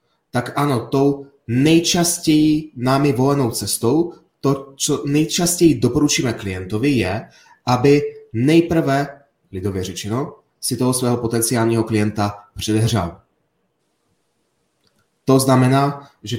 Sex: male